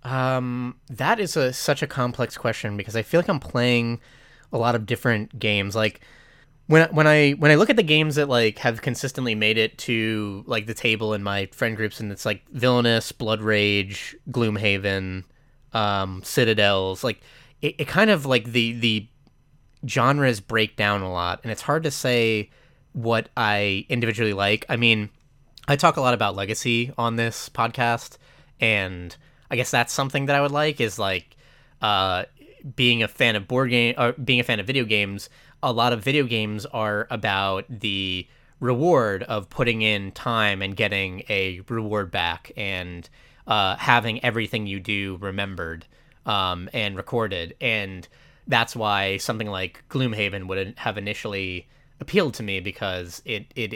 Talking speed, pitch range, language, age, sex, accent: 170 wpm, 100-130 Hz, English, 20-39, male, American